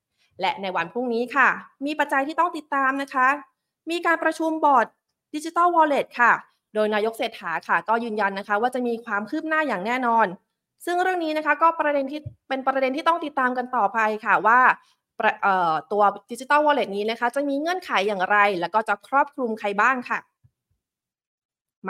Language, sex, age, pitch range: Thai, female, 20-39, 210-290 Hz